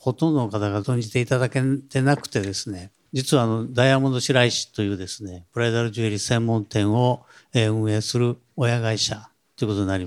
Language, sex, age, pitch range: Japanese, male, 50-69, 105-140 Hz